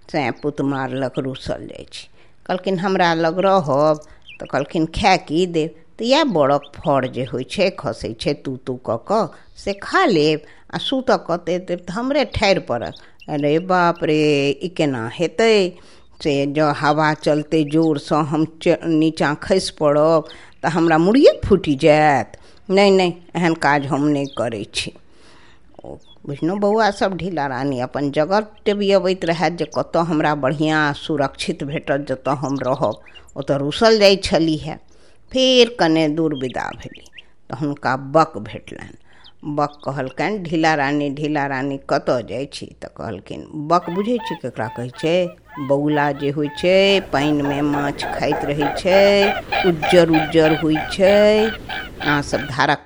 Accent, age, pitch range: native, 50-69, 145-180 Hz